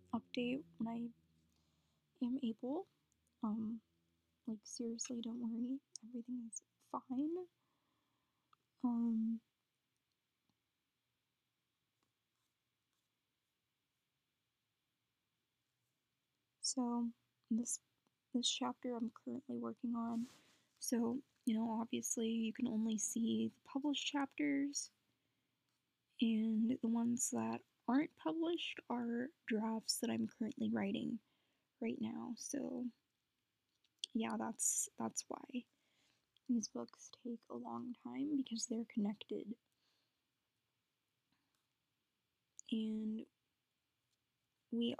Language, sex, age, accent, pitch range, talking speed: English, female, 10-29, American, 220-255 Hz, 85 wpm